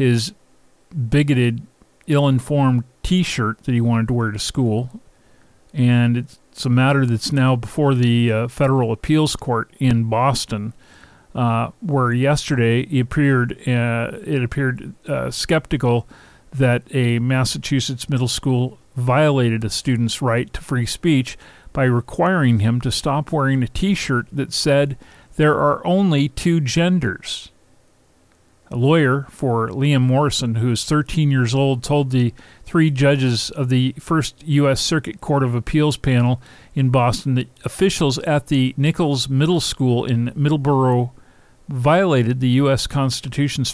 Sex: male